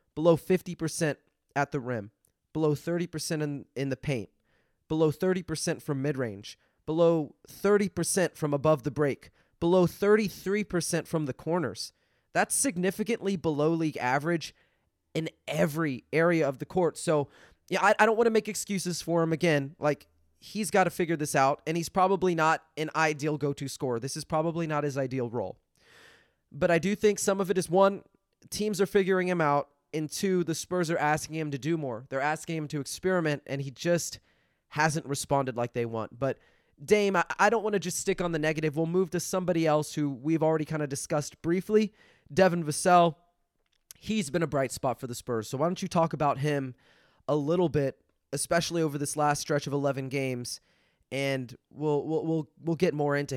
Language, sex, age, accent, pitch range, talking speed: English, male, 20-39, American, 135-175 Hz, 190 wpm